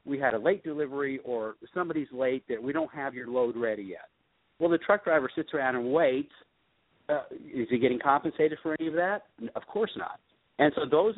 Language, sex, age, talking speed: English, male, 50-69, 210 wpm